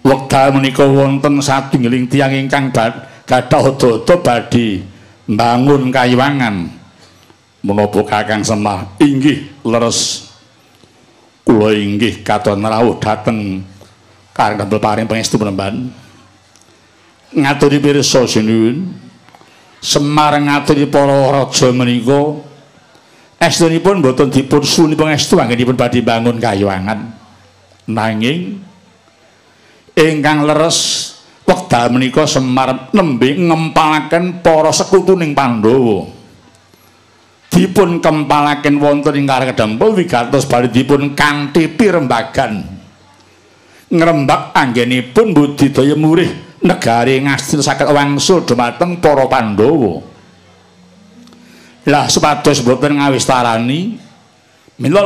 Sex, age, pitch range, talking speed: male, 60-79, 115-150 Hz, 95 wpm